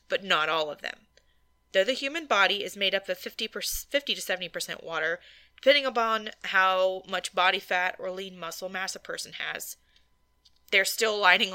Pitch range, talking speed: 185-255 Hz, 165 wpm